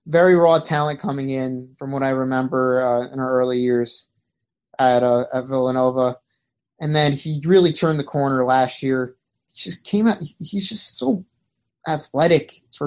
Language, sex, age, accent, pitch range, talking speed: English, male, 30-49, American, 130-165 Hz, 170 wpm